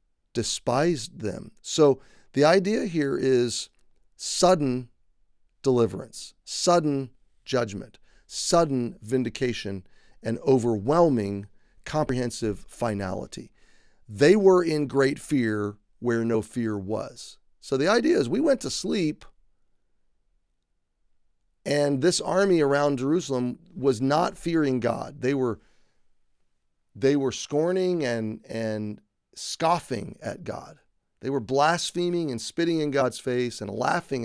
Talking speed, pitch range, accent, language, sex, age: 110 wpm, 110-150 Hz, American, English, male, 40-59